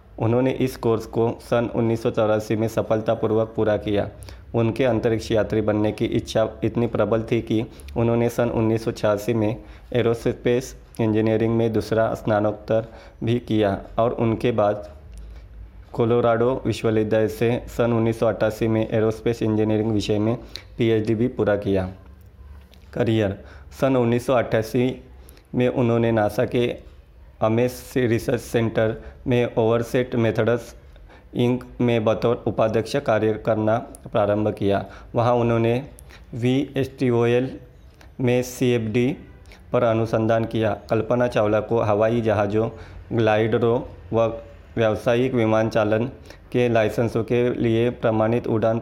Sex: male